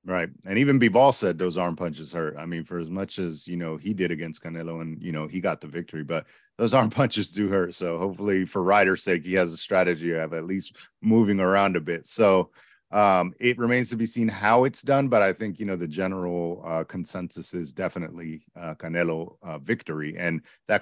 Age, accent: 30-49, American